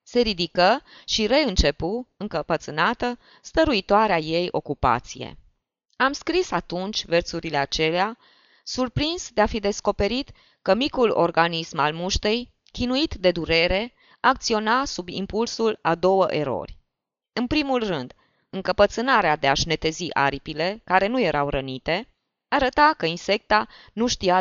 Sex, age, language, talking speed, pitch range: female, 20-39, Romanian, 120 wpm, 165-235 Hz